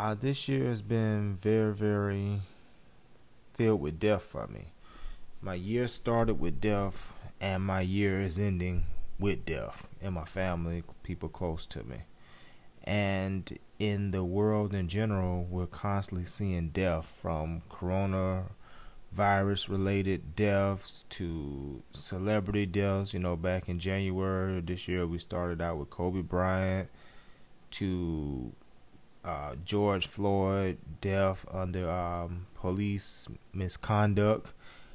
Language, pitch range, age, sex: English, 90-100 Hz, 30-49, male